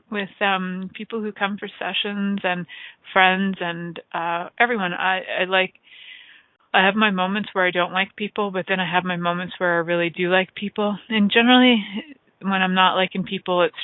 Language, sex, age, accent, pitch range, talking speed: English, female, 30-49, American, 175-220 Hz, 190 wpm